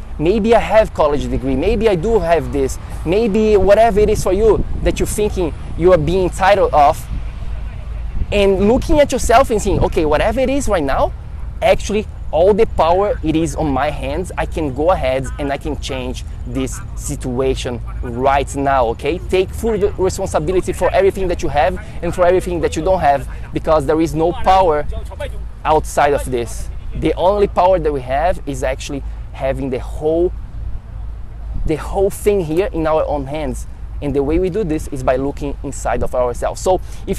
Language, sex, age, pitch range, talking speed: English, male, 20-39, 130-185 Hz, 185 wpm